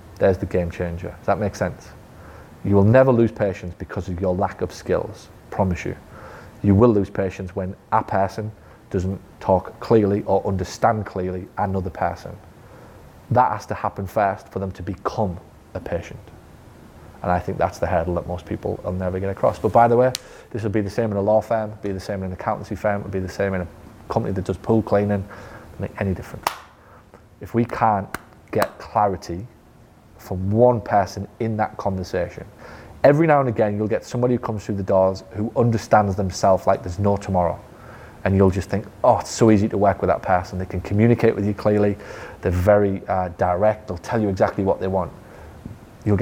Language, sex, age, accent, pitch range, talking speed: English, male, 30-49, British, 90-105 Hz, 200 wpm